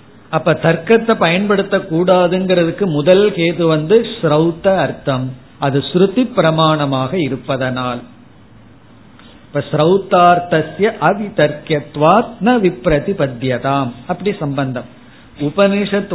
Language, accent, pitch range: Tamil, native, 135-180 Hz